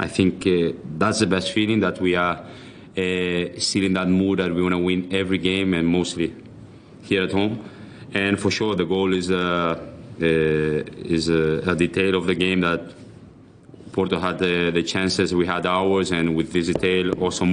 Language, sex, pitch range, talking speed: English, male, 90-125 Hz, 190 wpm